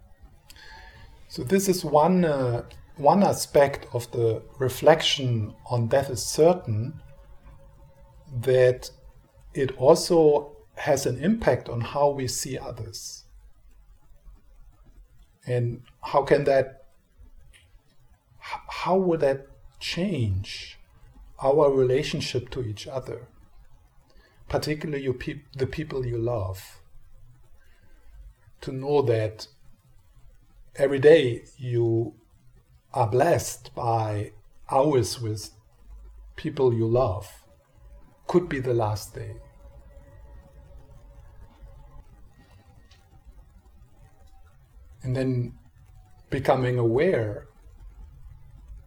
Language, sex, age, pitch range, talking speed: English, male, 50-69, 105-135 Hz, 80 wpm